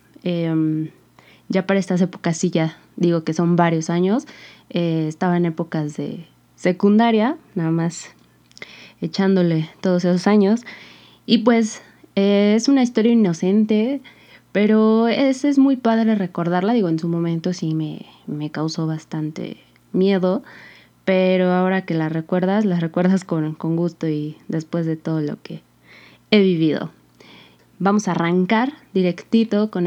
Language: Spanish